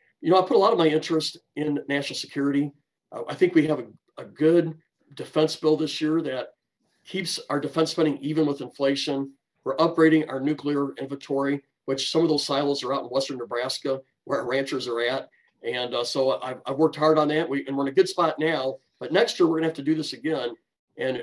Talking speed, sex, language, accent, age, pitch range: 225 wpm, male, English, American, 40-59, 135-160 Hz